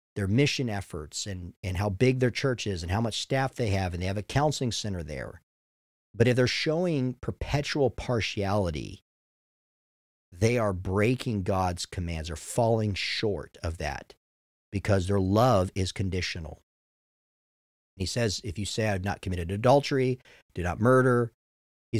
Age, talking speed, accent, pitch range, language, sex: 50-69, 160 wpm, American, 90-125 Hz, English, male